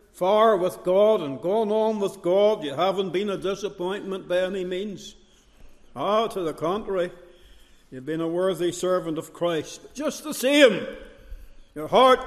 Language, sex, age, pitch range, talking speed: English, male, 60-79, 165-210 Hz, 165 wpm